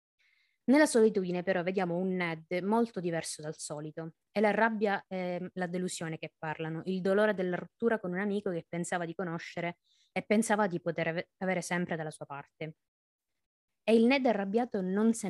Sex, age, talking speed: female, 20-39, 175 wpm